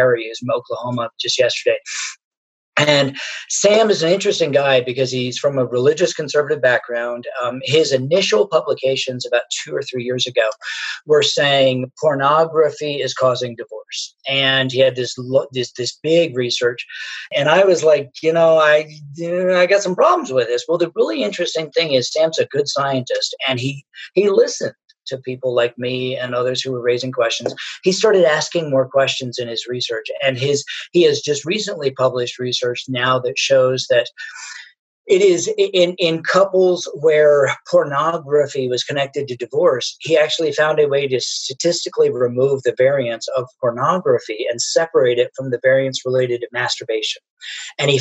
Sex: male